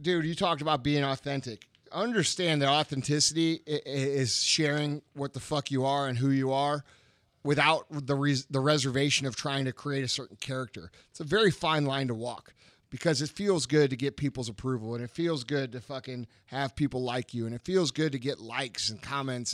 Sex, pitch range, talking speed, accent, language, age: male, 125-160 Hz, 200 wpm, American, English, 30-49